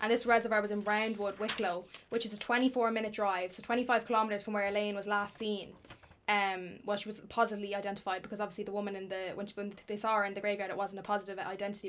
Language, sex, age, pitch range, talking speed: English, female, 10-29, 205-230 Hz, 235 wpm